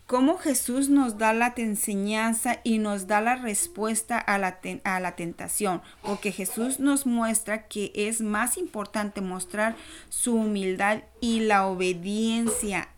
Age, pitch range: 30-49, 190-230 Hz